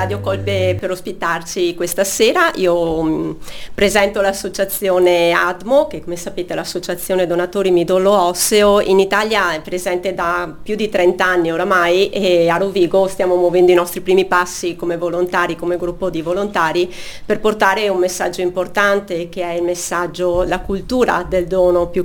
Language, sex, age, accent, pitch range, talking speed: Italian, female, 40-59, native, 175-200 Hz, 155 wpm